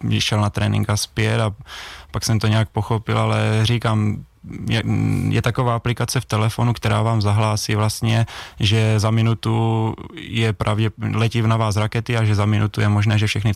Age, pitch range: 20-39, 105-115 Hz